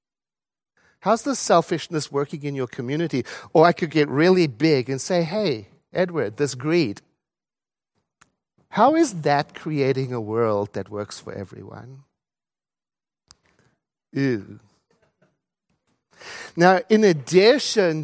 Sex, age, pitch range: male, 50-69, 125-170 Hz